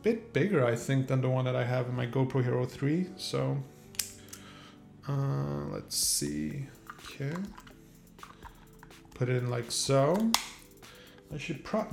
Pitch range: 120-145 Hz